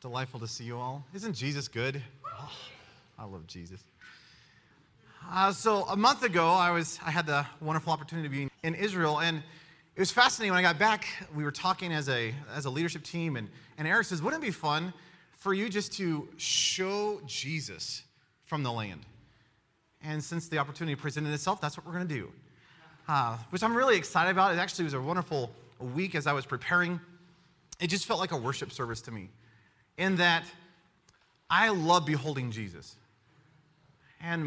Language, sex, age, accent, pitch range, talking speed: English, male, 30-49, American, 125-175 Hz, 185 wpm